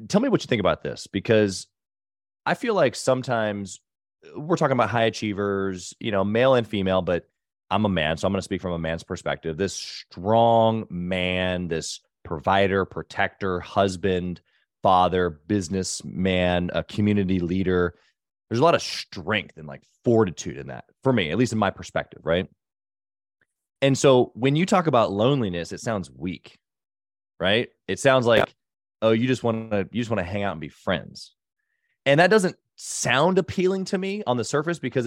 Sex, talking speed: male, 180 wpm